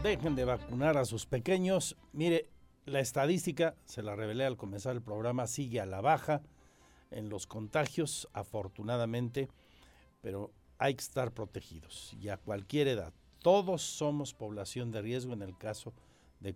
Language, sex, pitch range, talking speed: Spanish, male, 100-135 Hz, 150 wpm